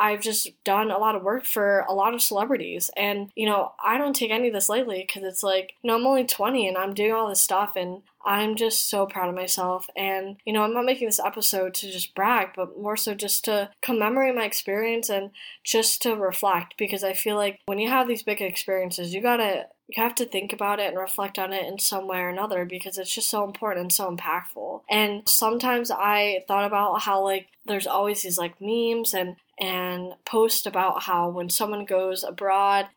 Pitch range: 190-220 Hz